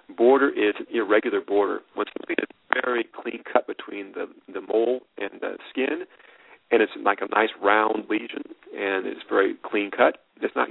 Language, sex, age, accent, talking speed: English, male, 40-59, American, 175 wpm